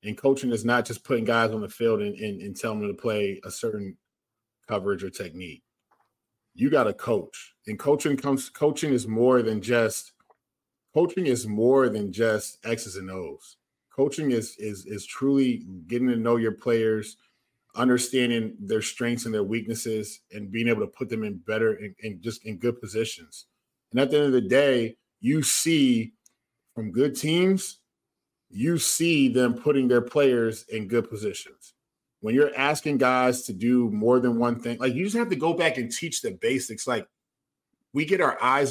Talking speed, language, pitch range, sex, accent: 185 wpm, English, 110-145 Hz, male, American